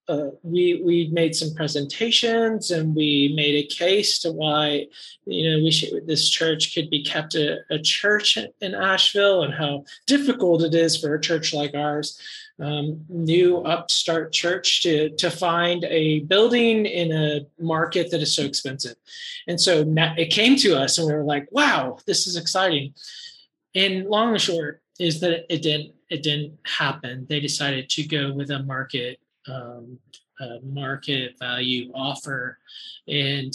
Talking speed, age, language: 165 wpm, 20-39, English